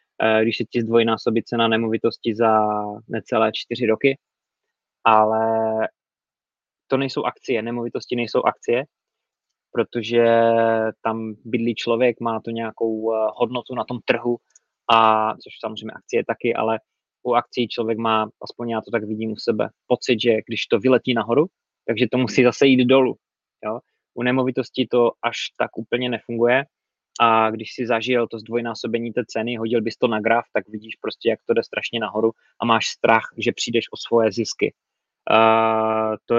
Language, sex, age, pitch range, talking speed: Czech, male, 20-39, 110-120 Hz, 155 wpm